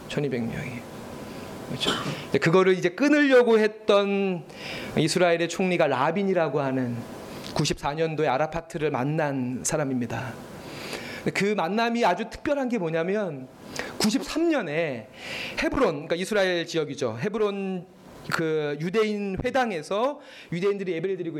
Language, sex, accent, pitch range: Korean, male, native, 155-225 Hz